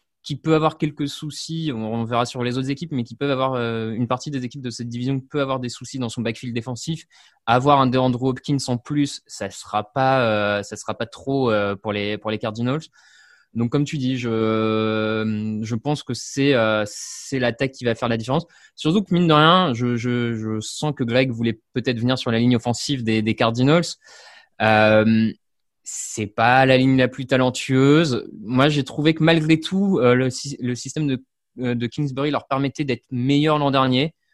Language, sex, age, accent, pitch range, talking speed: French, male, 20-39, French, 115-140 Hz, 195 wpm